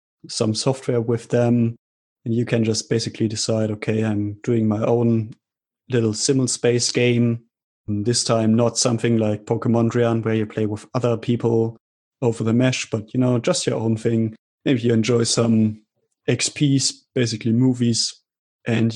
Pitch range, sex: 110-125 Hz, male